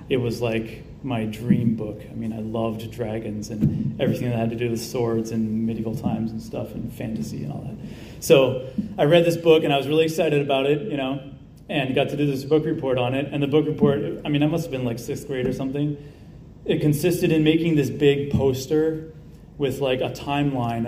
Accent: American